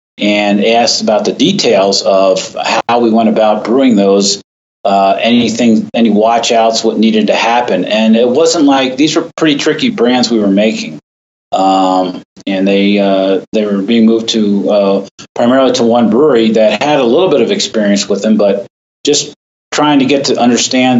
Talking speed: 180 wpm